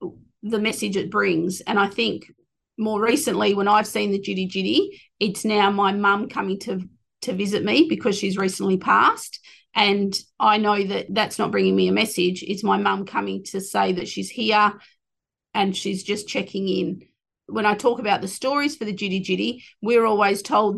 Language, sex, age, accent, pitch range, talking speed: English, female, 30-49, Australian, 195-230 Hz, 190 wpm